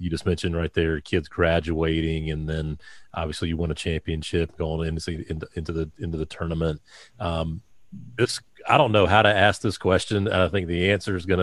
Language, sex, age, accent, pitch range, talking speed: English, male, 40-59, American, 85-100 Hz, 200 wpm